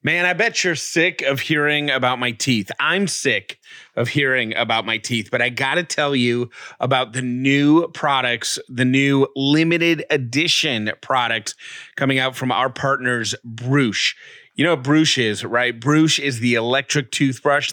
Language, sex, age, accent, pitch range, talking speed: English, male, 30-49, American, 120-145 Hz, 165 wpm